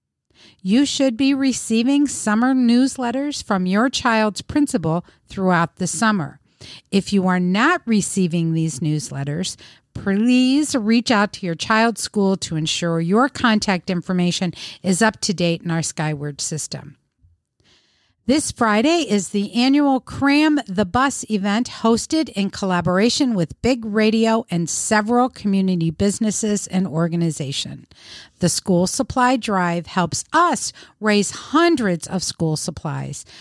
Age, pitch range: 50-69, 175-245 Hz